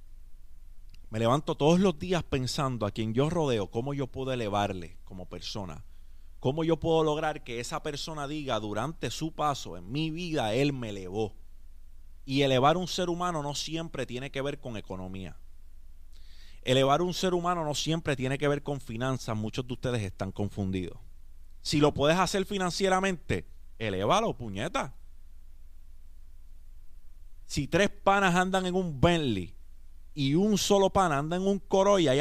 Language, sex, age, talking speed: Spanish, male, 30-49, 160 wpm